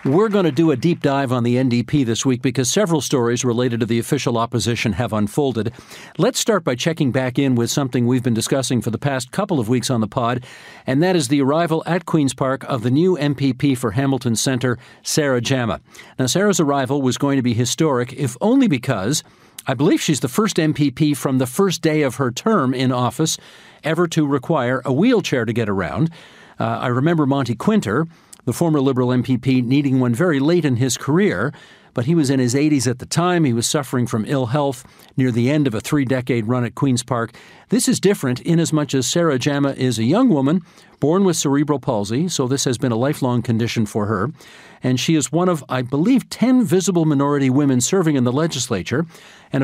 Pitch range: 125-160 Hz